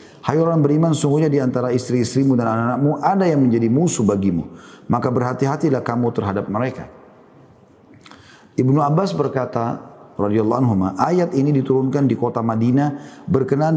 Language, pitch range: Indonesian, 115-135 Hz